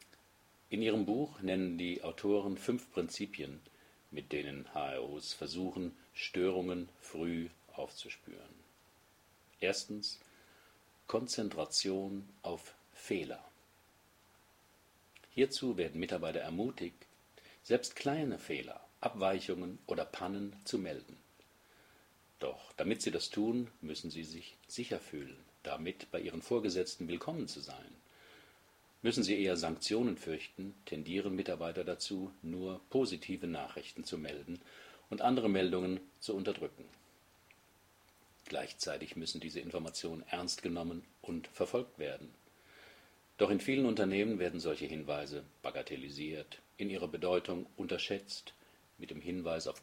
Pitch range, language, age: 85-100 Hz, German, 50-69